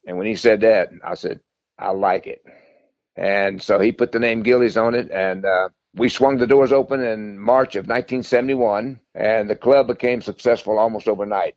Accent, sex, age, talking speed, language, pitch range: American, male, 60-79, 190 wpm, English, 105-125 Hz